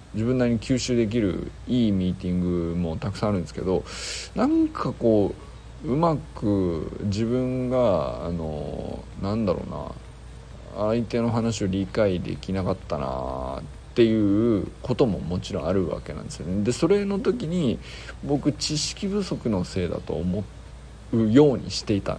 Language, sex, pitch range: Japanese, male, 95-135 Hz